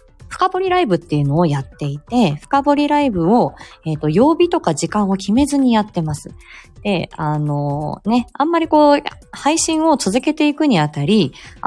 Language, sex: Japanese, female